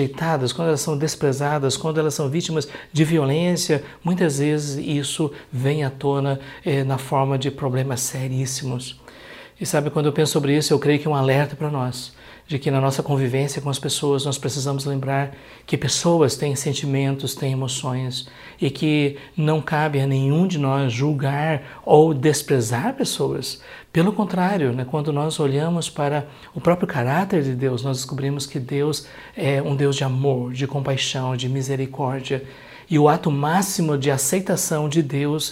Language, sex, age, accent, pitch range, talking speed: Portuguese, male, 60-79, Brazilian, 135-160 Hz, 165 wpm